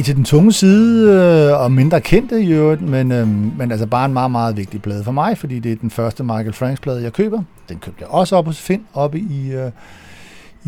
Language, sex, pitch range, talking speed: Danish, male, 110-140 Hz, 225 wpm